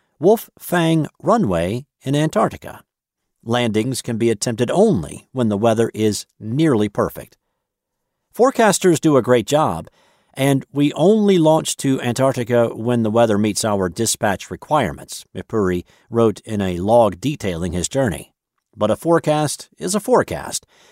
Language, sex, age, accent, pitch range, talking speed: English, male, 50-69, American, 105-155 Hz, 140 wpm